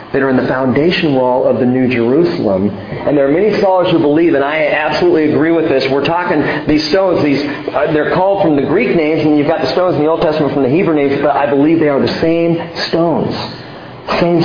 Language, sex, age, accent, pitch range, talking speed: English, male, 50-69, American, 145-200 Hz, 235 wpm